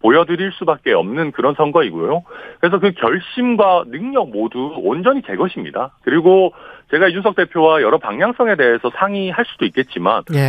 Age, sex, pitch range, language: 40-59, male, 155-260 Hz, Korean